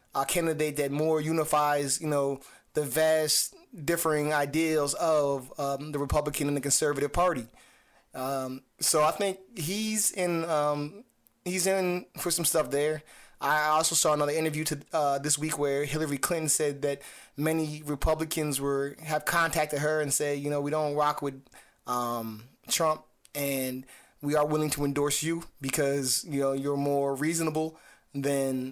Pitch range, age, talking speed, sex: 140-160 Hz, 20-39, 160 wpm, male